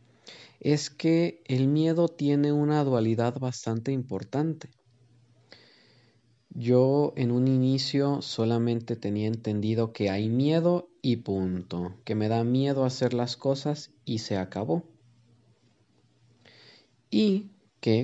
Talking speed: 110 wpm